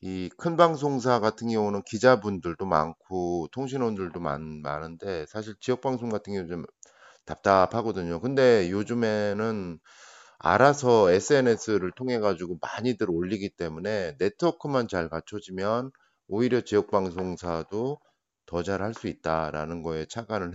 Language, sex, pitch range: Korean, male, 90-130 Hz